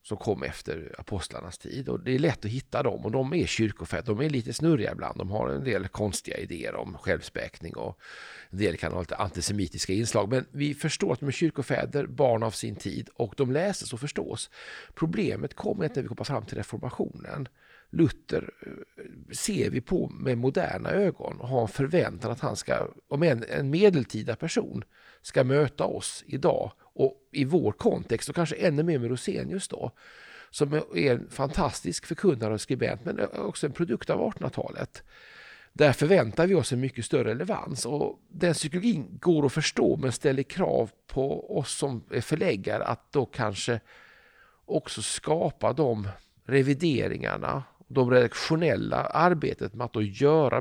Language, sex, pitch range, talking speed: Swedish, male, 115-160 Hz, 170 wpm